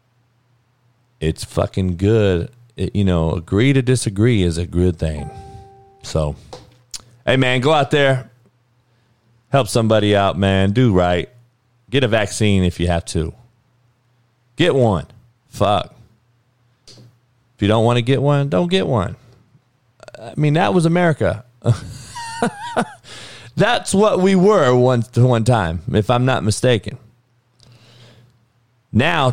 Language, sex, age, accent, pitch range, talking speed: English, male, 40-59, American, 105-125 Hz, 125 wpm